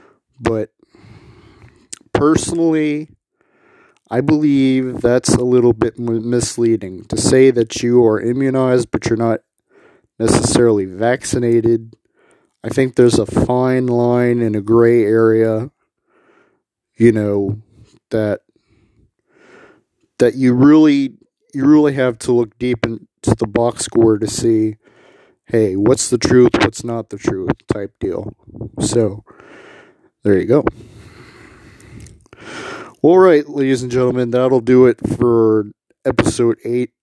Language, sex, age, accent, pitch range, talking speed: English, male, 30-49, American, 110-125 Hz, 120 wpm